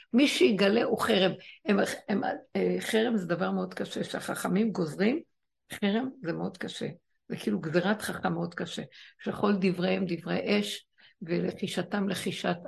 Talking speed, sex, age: 135 wpm, female, 60-79